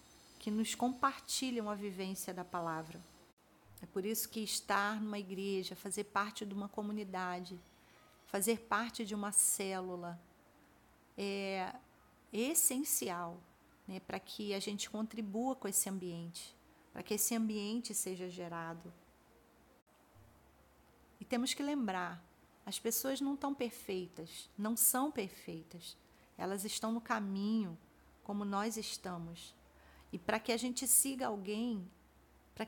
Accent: Brazilian